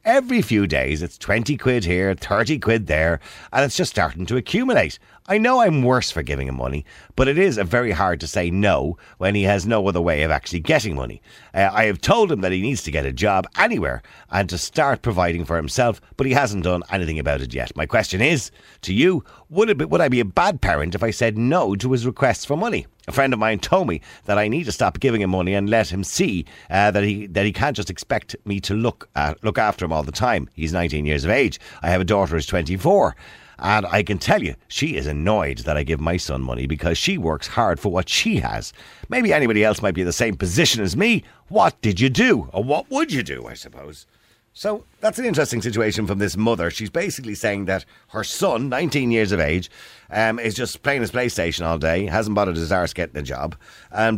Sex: male